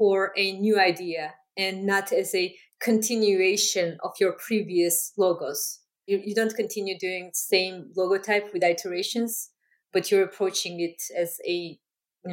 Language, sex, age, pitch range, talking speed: English, female, 20-39, 180-220 Hz, 145 wpm